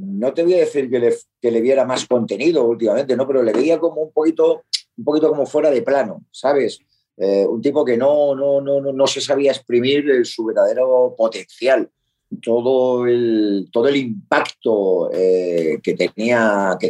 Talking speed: 180 wpm